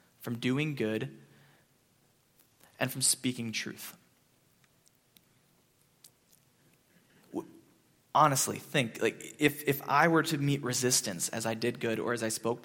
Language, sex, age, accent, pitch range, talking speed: English, male, 20-39, American, 115-150 Hz, 120 wpm